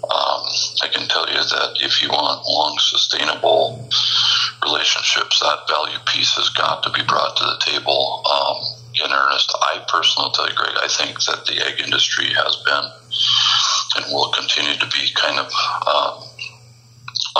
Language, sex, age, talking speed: English, male, 60-79, 165 wpm